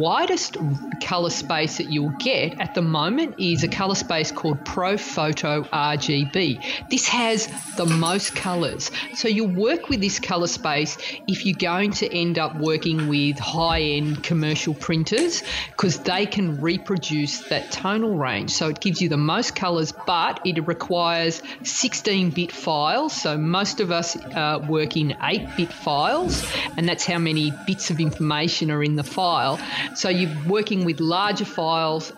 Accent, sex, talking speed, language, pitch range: Australian, female, 160 wpm, English, 155-195 Hz